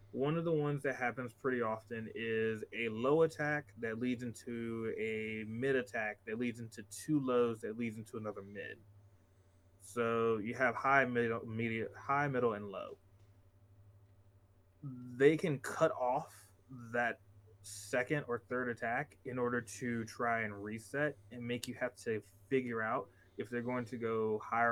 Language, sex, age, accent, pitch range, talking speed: English, male, 20-39, American, 100-135 Hz, 155 wpm